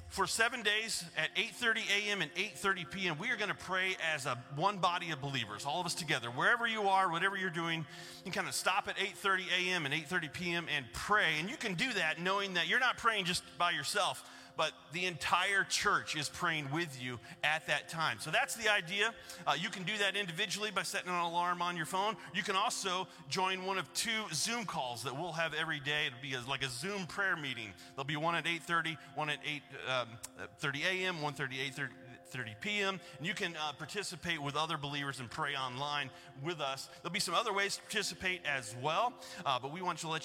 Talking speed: 220 wpm